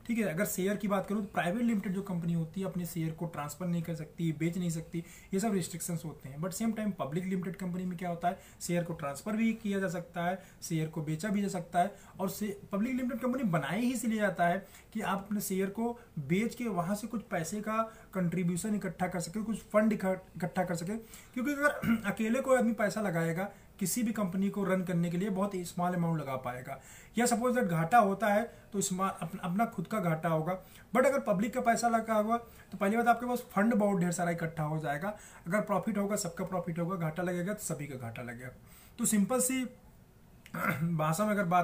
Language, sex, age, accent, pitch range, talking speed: Hindi, male, 30-49, native, 175-220 Hz, 205 wpm